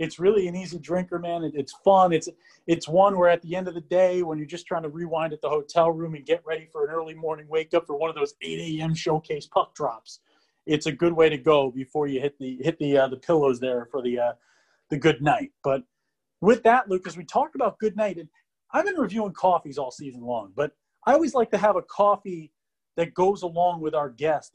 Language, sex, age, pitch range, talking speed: English, male, 30-49, 150-205 Hz, 245 wpm